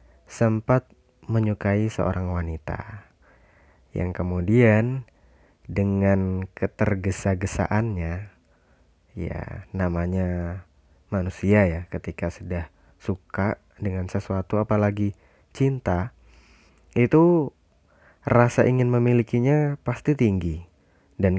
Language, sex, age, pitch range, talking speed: Indonesian, male, 20-39, 85-110 Hz, 75 wpm